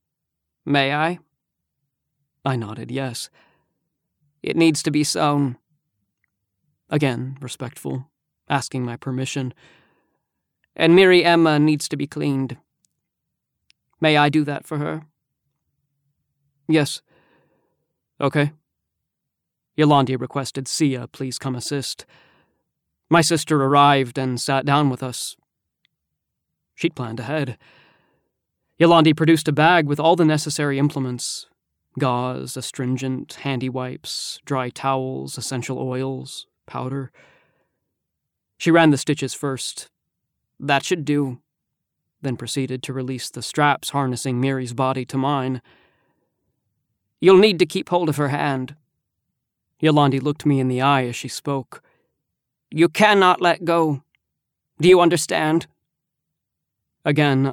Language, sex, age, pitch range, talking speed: English, male, 30-49, 130-155 Hz, 115 wpm